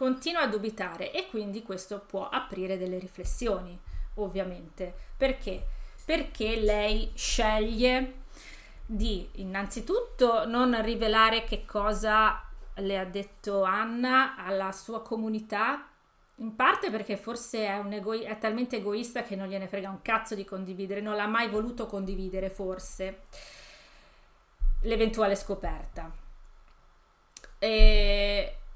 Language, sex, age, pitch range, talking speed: Italian, female, 30-49, 195-240 Hz, 110 wpm